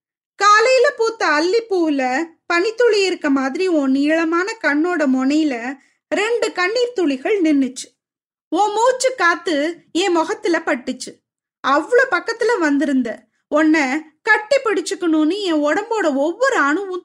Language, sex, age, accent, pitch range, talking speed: Tamil, female, 20-39, native, 290-410 Hz, 95 wpm